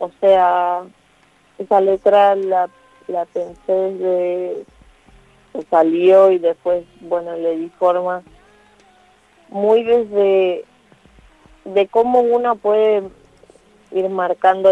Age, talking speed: 30-49, 100 wpm